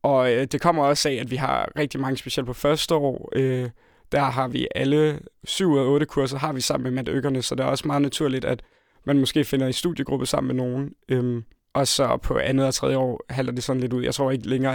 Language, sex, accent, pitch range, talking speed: Danish, male, native, 130-145 Hz, 250 wpm